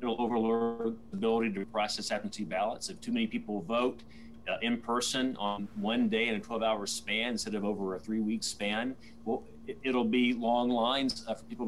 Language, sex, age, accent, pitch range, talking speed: English, male, 40-59, American, 115-140 Hz, 185 wpm